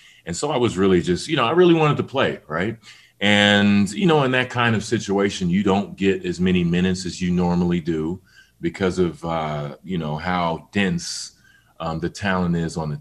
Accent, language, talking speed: American, English, 210 wpm